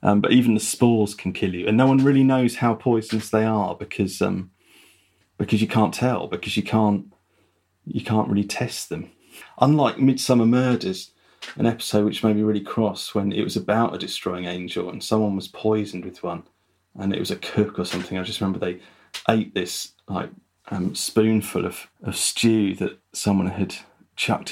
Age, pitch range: 30-49, 100-115 Hz